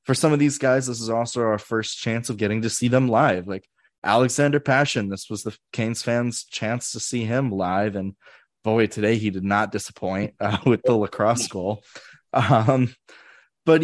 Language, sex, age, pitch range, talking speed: English, male, 20-39, 105-135 Hz, 190 wpm